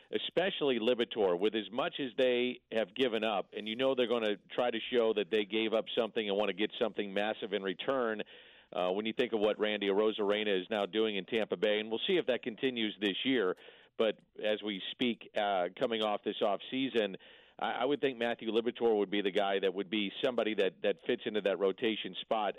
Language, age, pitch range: English, 50-69, 105-130 Hz